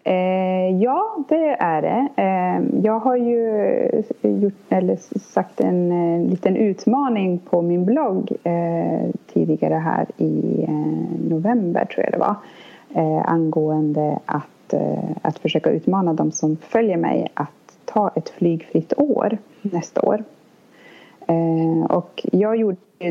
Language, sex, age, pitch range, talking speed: English, female, 30-49, 155-205 Hz, 110 wpm